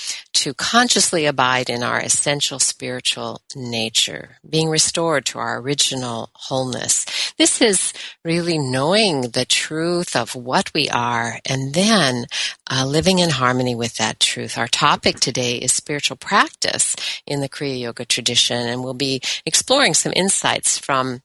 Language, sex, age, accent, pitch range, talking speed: English, female, 50-69, American, 125-160 Hz, 145 wpm